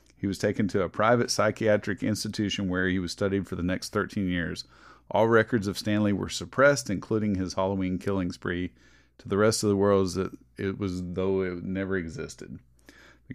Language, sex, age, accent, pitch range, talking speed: English, male, 40-59, American, 95-110 Hz, 185 wpm